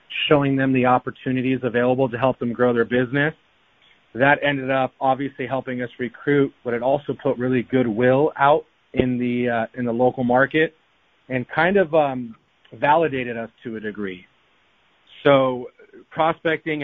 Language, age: English, 30-49